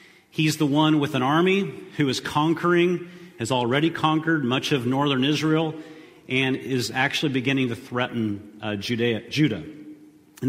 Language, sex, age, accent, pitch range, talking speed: English, male, 40-59, American, 120-160 Hz, 145 wpm